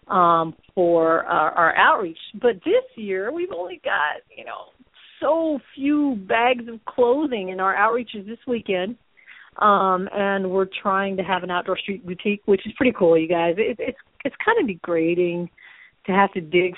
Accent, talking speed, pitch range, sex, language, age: American, 175 wpm, 180-235 Hz, female, English, 40-59